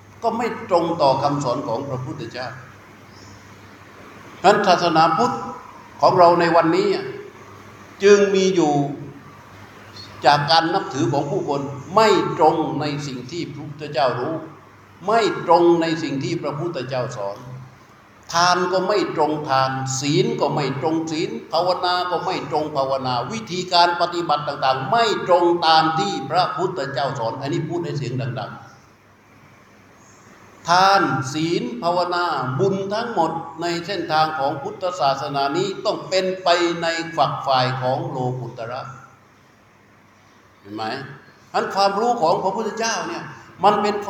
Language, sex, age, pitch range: Thai, male, 60-79, 130-180 Hz